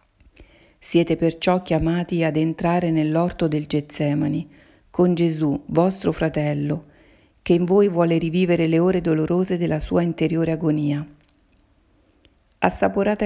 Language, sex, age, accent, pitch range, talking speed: Italian, female, 50-69, native, 155-185 Hz, 115 wpm